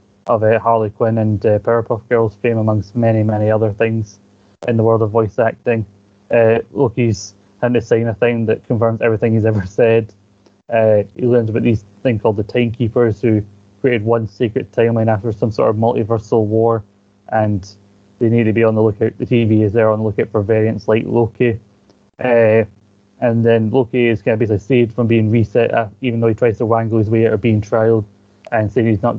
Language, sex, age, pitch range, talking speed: English, male, 20-39, 105-120 Hz, 205 wpm